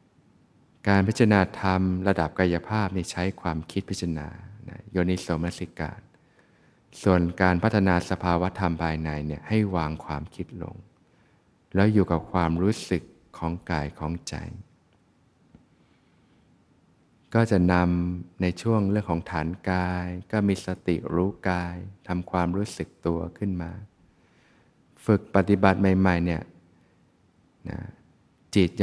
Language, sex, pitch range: Thai, male, 85-105 Hz